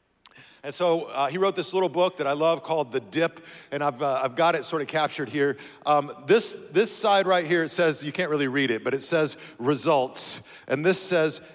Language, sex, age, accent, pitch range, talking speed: English, male, 50-69, American, 150-195 Hz, 230 wpm